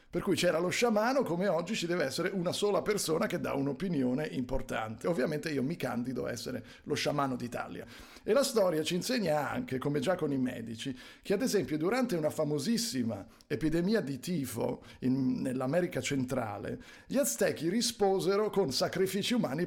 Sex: male